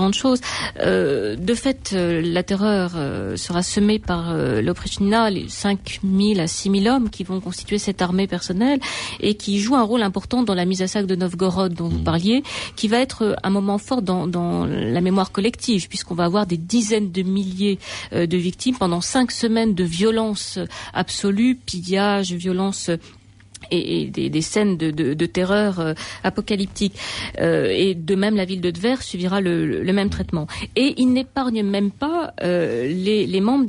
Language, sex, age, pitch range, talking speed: French, female, 40-59, 180-225 Hz, 180 wpm